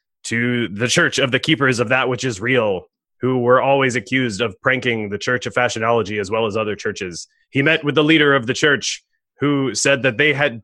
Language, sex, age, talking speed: English, male, 20-39, 220 wpm